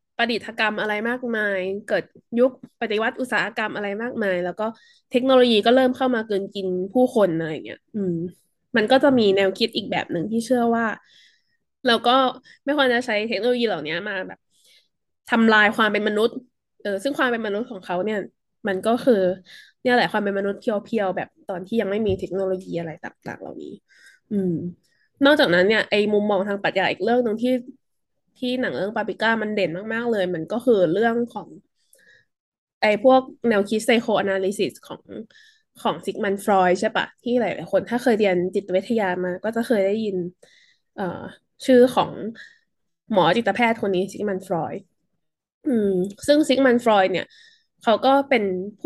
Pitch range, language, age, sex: 195-250 Hz, Thai, 20-39, female